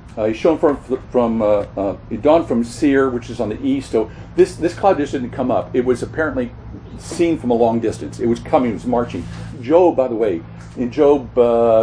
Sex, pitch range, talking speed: male, 115-165 Hz, 220 wpm